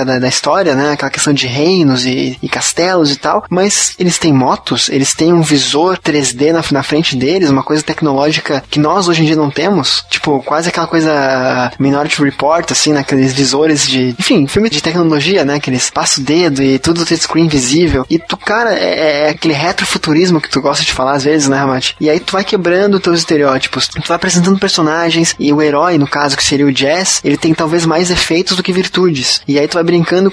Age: 20-39